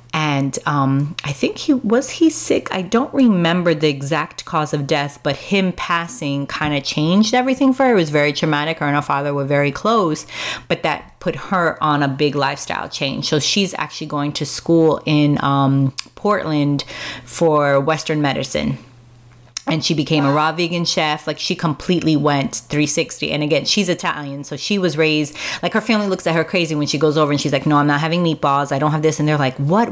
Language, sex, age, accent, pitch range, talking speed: English, female, 30-49, American, 145-175 Hz, 210 wpm